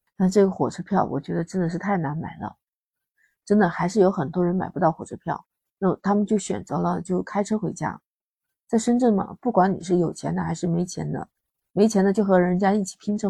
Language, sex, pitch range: Chinese, female, 175-210 Hz